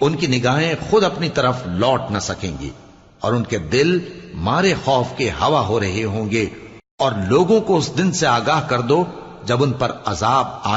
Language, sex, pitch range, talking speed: Urdu, male, 110-150 Hz, 200 wpm